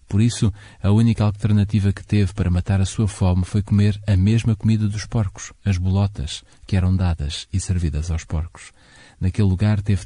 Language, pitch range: Portuguese, 95-110 Hz